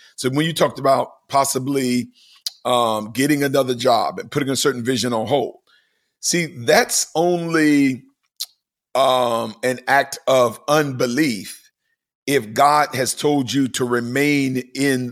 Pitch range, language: 125-155 Hz, English